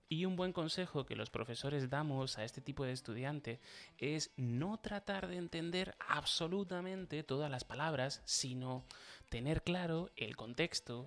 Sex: male